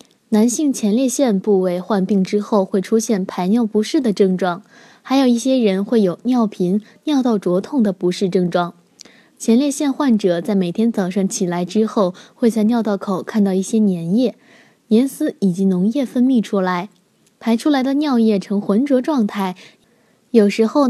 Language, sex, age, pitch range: Chinese, female, 20-39, 200-250 Hz